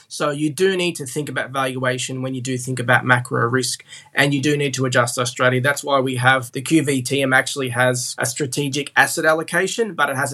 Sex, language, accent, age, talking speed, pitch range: male, English, Australian, 20-39, 220 wpm, 130-155 Hz